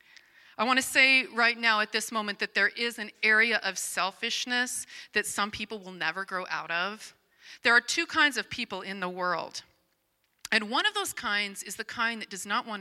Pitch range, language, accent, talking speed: 185-245 Hz, English, American, 210 wpm